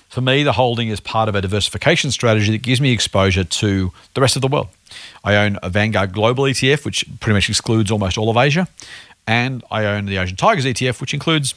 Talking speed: 225 wpm